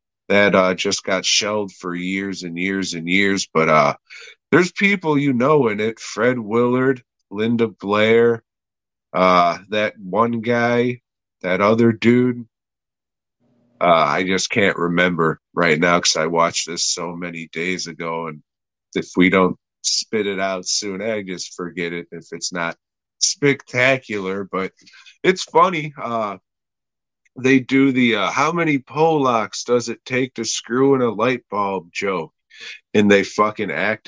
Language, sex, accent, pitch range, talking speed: English, male, American, 90-120 Hz, 150 wpm